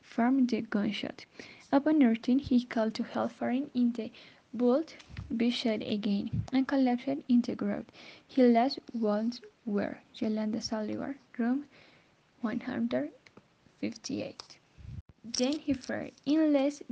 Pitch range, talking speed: 225-265 Hz, 100 wpm